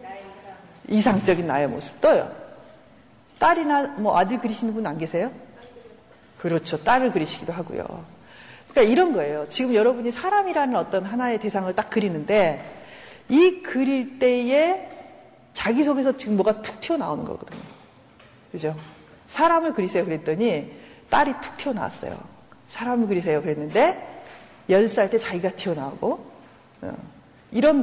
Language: Korean